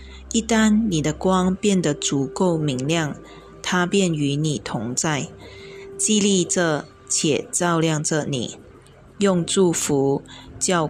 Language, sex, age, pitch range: Chinese, female, 20-39, 140-190 Hz